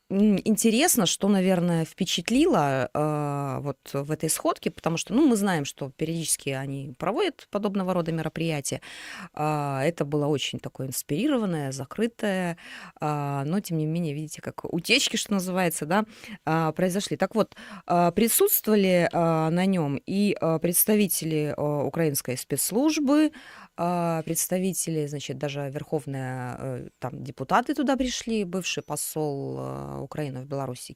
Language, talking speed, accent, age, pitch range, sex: Russian, 110 wpm, native, 20-39, 150-195 Hz, female